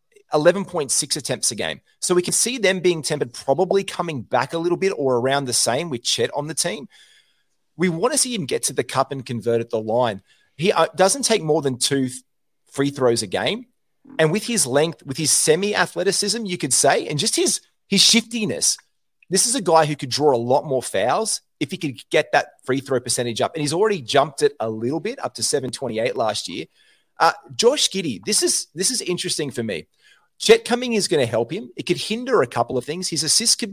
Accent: Australian